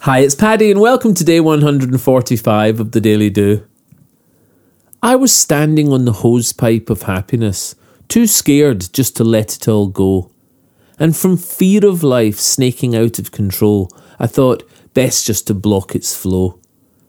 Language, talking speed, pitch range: English, 160 wpm, 110-160 Hz